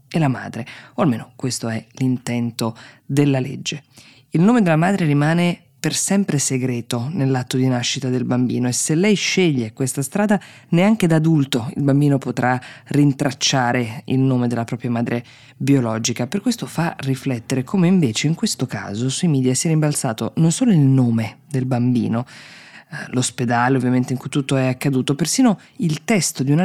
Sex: female